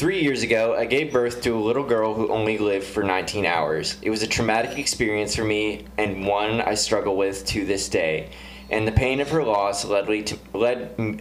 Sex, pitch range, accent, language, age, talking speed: male, 100-115 Hz, American, English, 20-39, 205 wpm